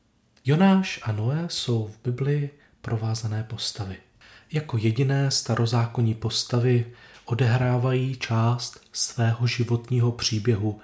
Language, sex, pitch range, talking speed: Czech, male, 110-140 Hz, 95 wpm